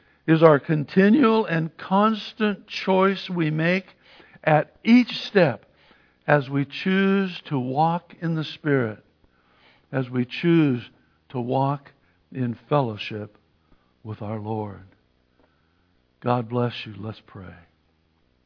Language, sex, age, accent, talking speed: English, male, 60-79, American, 110 wpm